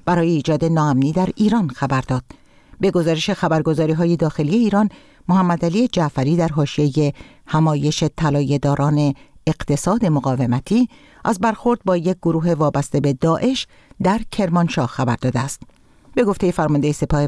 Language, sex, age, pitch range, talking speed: Persian, female, 50-69, 145-195 Hz, 130 wpm